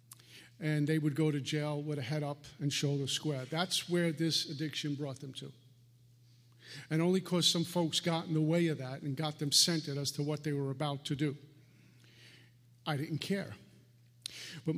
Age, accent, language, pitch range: 50-69, American, English, 140-165 Hz